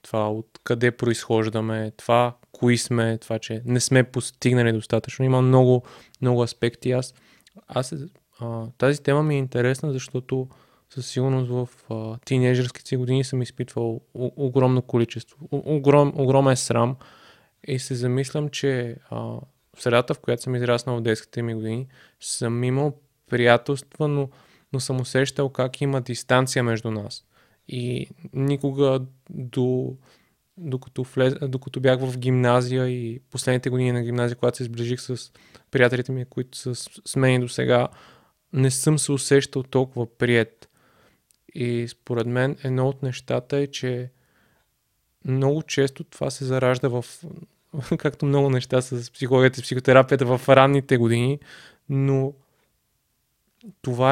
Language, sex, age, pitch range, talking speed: Bulgarian, male, 20-39, 120-135 Hz, 135 wpm